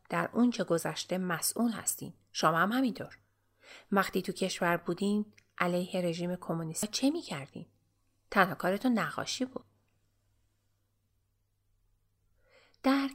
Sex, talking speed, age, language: female, 100 wpm, 30-49, Persian